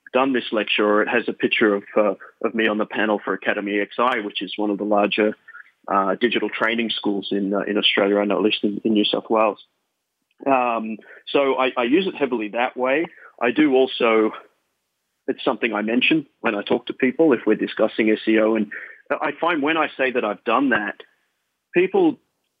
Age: 30-49